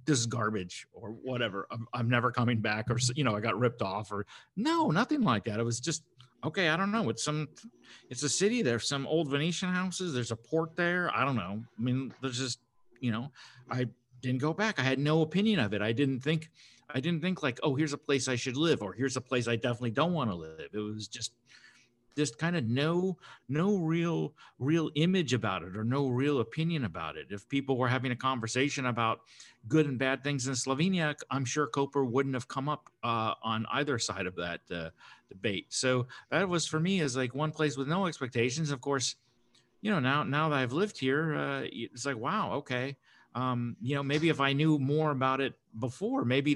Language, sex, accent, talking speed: English, male, American, 220 wpm